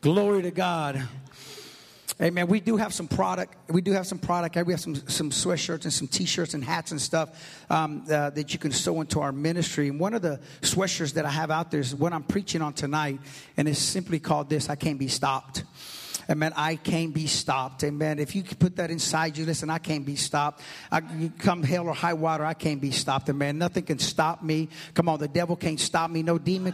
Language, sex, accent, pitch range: English, male, American, 155-190 Hz